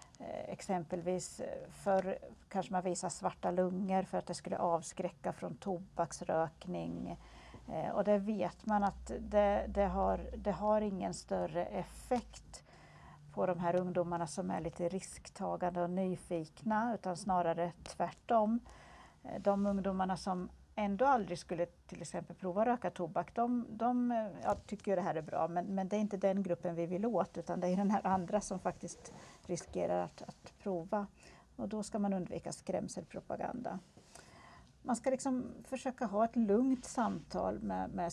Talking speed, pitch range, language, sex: 155 wpm, 175-215 Hz, English, female